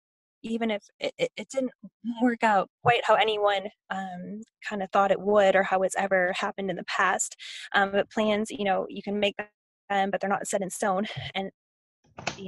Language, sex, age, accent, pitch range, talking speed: English, female, 10-29, American, 195-225 Hz, 185 wpm